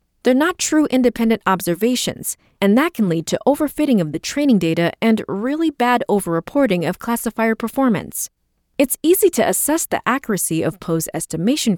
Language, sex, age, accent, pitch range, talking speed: English, female, 30-49, American, 170-270 Hz, 160 wpm